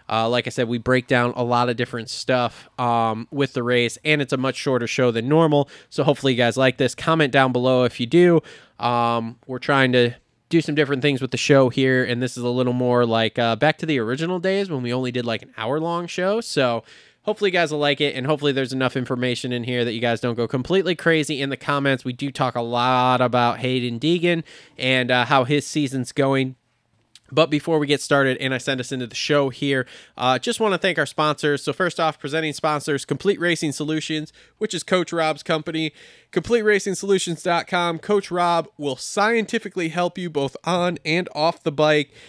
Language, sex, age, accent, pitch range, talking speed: English, male, 20-39, American, 125-160 Hz, 215 wpm